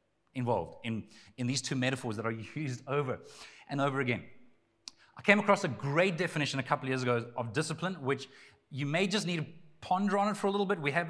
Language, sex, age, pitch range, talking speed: English, male, 30-49, 135-180 Hz, 220 wpm